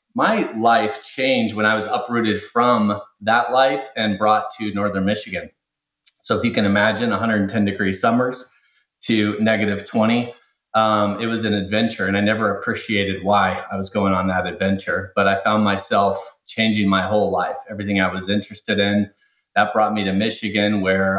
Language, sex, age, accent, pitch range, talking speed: English, male, 30-49, American, 100-115 Hz, 170 wpm